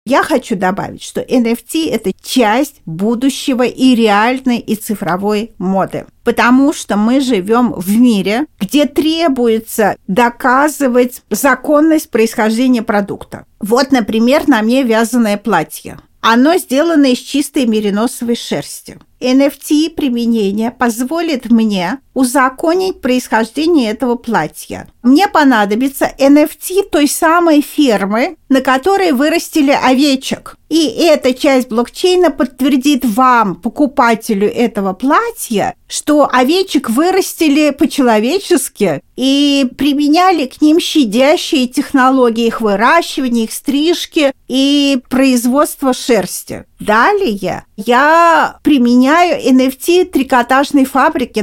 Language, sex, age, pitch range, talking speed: Russian, female, 50-69, 230-295 Hz, 100 wpm